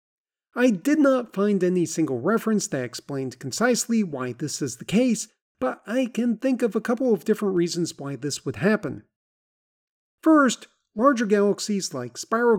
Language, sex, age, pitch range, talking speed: English, male, 40-59, 160-230 Hz, 160 wpm